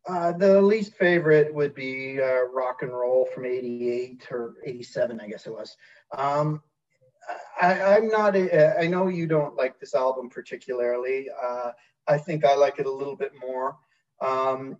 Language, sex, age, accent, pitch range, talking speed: English, male, 40-59, American, 125-155 Hz, 170 wpm